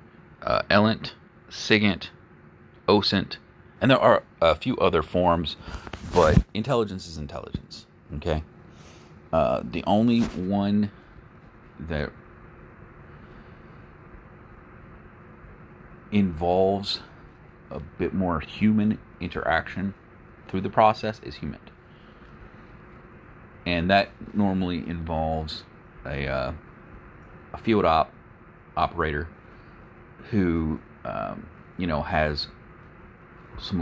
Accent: American